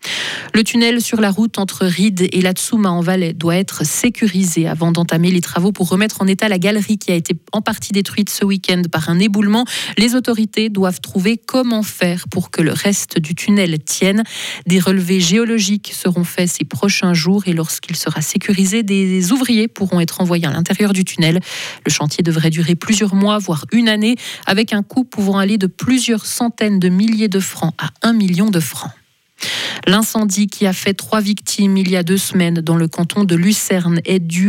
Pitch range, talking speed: 170-205 Hz, 195 wpm